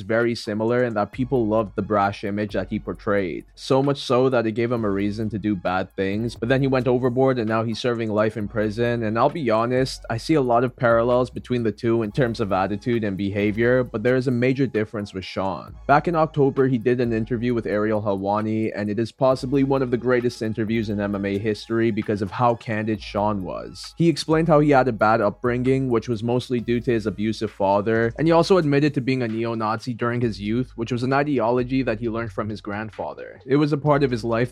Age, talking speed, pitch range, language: 20-39, 235 wpm, 110-125 Hz, English